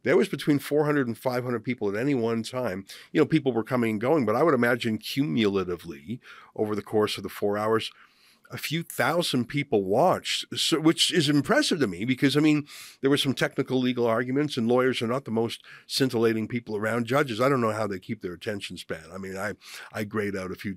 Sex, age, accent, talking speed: male, 50-69, American, 220 wpm